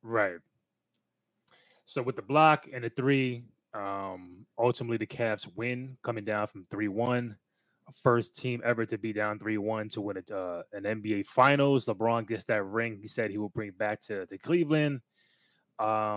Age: 20-39